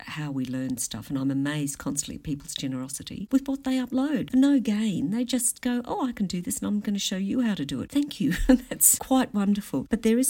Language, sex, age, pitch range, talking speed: English, female, 50-69, 155-220 Hz, 250 wpm